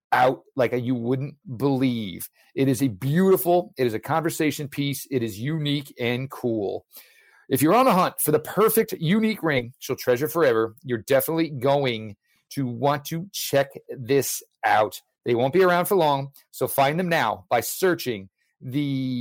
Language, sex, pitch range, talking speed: English, male, 130-175 Hz, 170 wpm